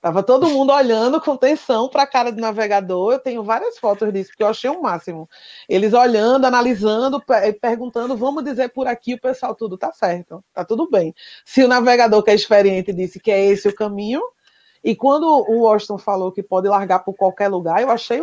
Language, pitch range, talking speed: Portuguese, 200-255 Hz, 205 wpm